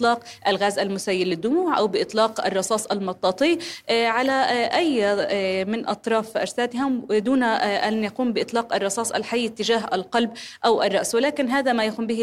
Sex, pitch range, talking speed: female, 205-245 Hz, 135 wpm